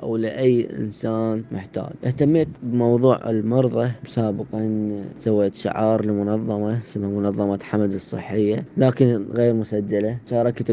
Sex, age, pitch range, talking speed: female, 10-29, 105-115 Hz, 105 wpm